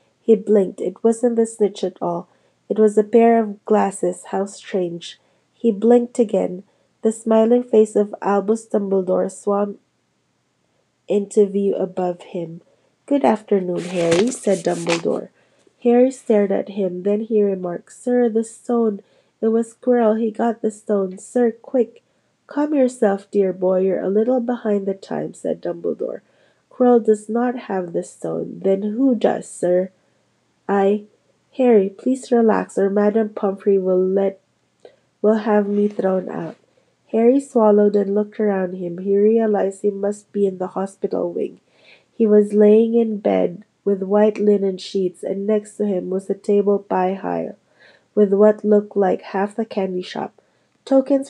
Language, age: English, 30-49